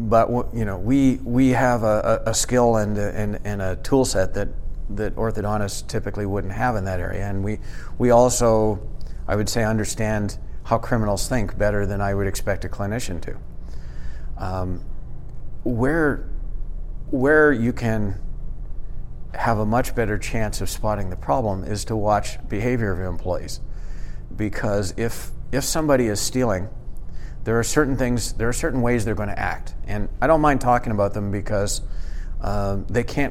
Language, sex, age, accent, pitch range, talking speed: English, male, 50-69, American, 90-115 Hz, 165 wpm